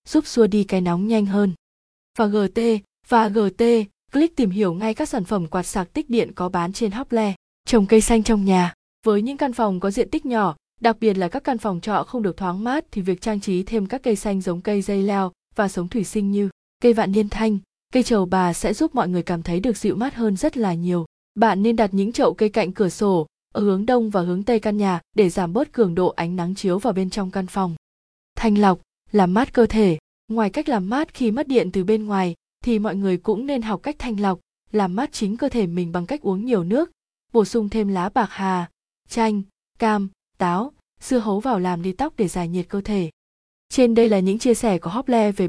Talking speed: 240 wpm